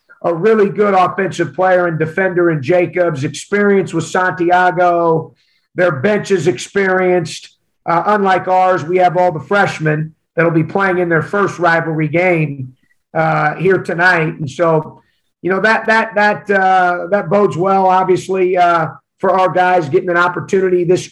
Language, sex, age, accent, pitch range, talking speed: English, male, 50-69, American, 165-185 Hz, 160 wpm